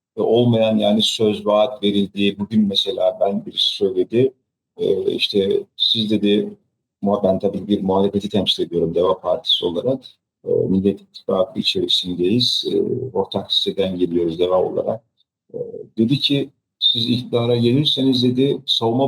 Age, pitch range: 50-69, 110-140 Hz